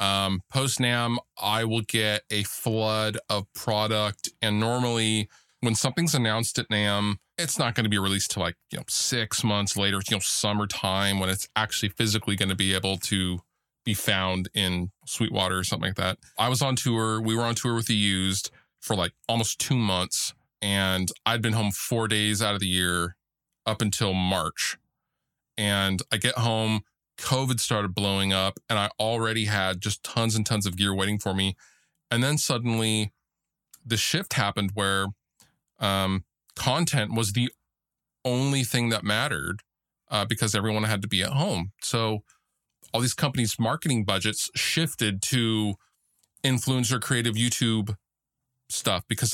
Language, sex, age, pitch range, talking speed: English, male, 20-39, 100-120 Hz, 165 wpm